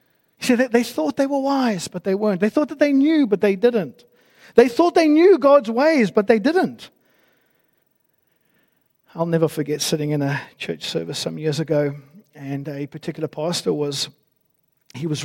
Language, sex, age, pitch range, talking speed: English, male, 50-69, 145-180 Hz, 175 wpm